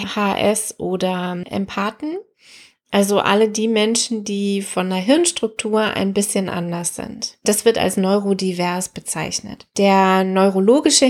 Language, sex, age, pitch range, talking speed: German, female, 20-39, 185-225 Hz, 120 wpm